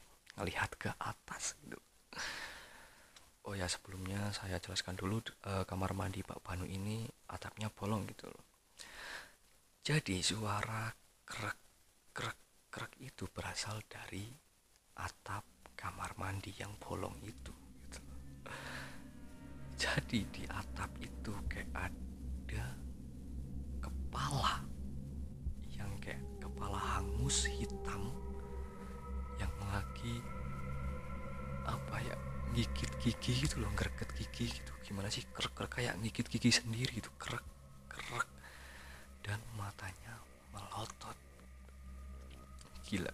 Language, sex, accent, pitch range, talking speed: Indonesian, male, native, 65-95 Hz, 90 wpm